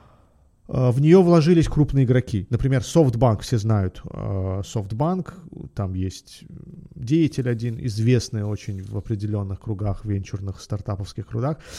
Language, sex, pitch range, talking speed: Russian, male, 110-145 Hz, 110 wpm